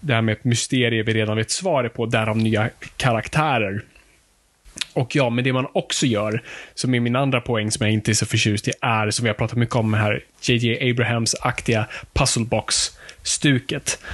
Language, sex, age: Swedish, male, 20-39